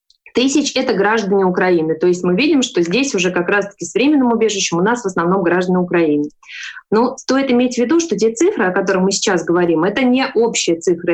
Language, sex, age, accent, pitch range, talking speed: Russian, female, 20-39, native, 175-225 Hz, 215 wpm